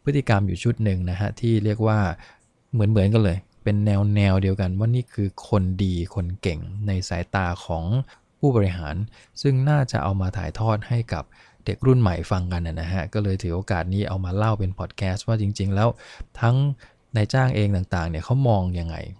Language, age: English, 20-39